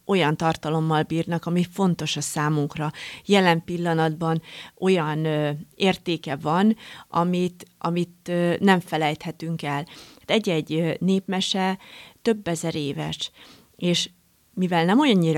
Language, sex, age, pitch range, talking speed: Hungarian, female, 30-49, 155-185 Hz, 100 wpm